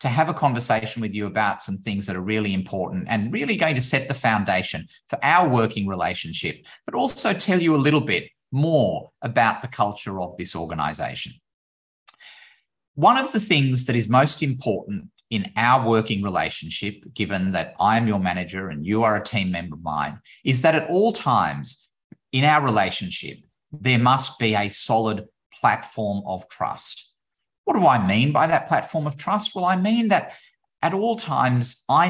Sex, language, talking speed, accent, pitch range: male, English, 180 wpm, Australian, 105-155 Hz